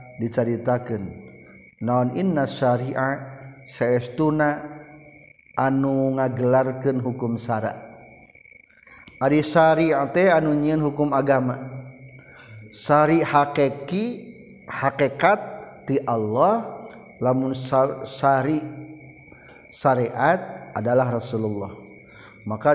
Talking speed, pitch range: 70 wpm, 120-140 Hz